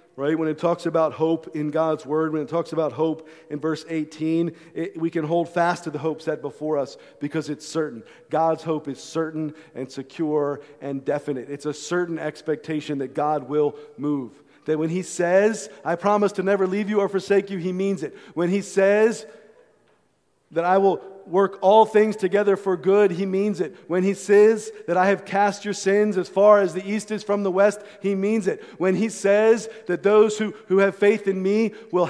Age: 40-59